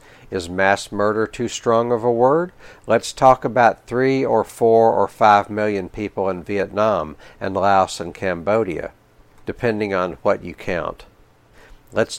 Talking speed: 150 wpm